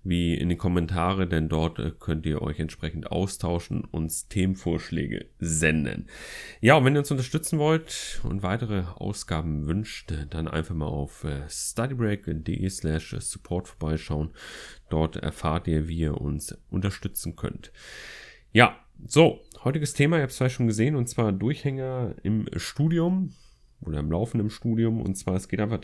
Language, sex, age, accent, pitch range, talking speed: German, male, 30-49, German, 85-110 Hz, 155 wpm